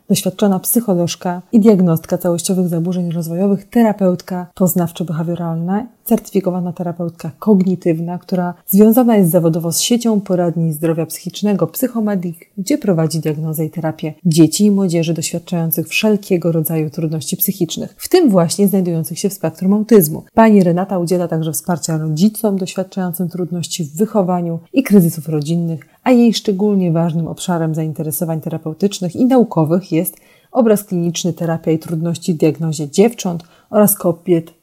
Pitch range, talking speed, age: 165-195 Hz, 130 wpm, 30-49